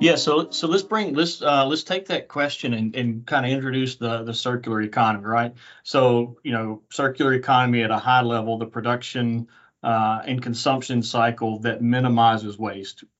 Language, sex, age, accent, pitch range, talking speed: English, male, 40-59, American, 115-130 Hz, 175 wpm